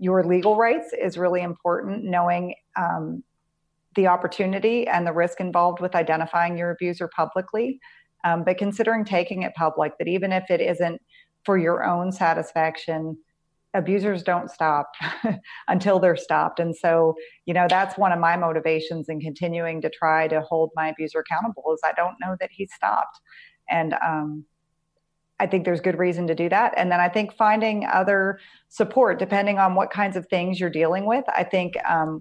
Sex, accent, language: female, American, English